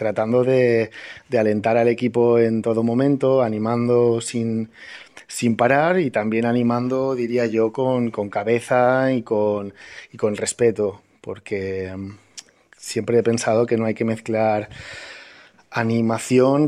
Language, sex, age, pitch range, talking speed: French, male, 20-39, 110-120 Hz, 125 wpm